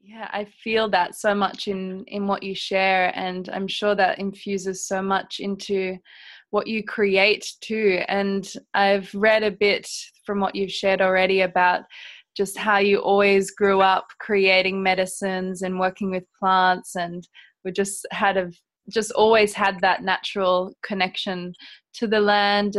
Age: 20-39